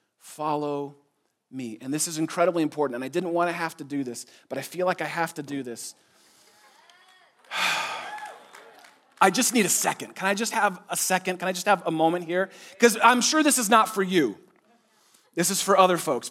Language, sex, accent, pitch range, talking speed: English, male, American, 170-245 Hz, 205 wpm